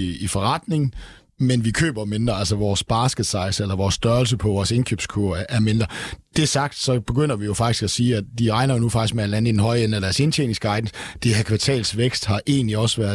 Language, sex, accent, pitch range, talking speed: Danish, male, native, 105-130 Hz, 225 wpm